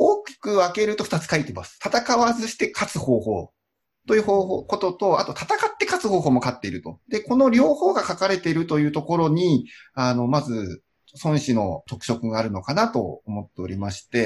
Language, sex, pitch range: Japanese, male, 125-210 Hz